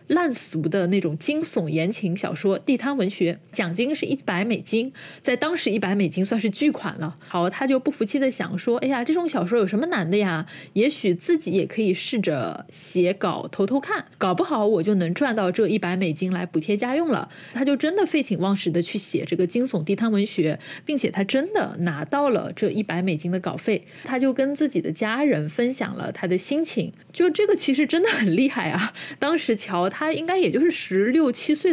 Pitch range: 185-285 Hz